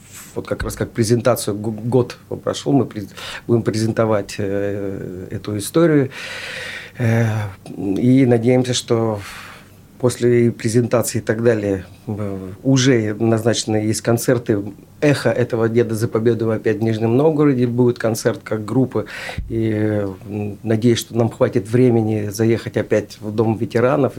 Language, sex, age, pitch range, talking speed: Russian, male, 40-59, 105-125 Hz, 120 wpm